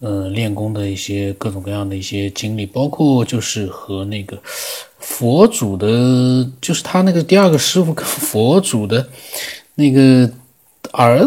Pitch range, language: 110-140 Hz, Chinese